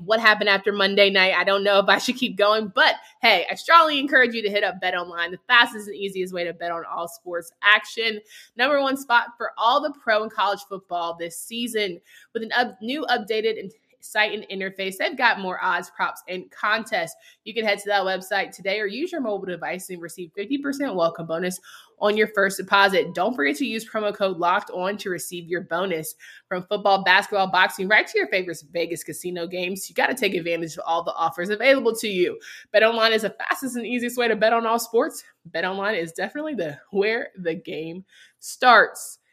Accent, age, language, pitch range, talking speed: American, 20-39, English, 185-230 Hz, 215 wpm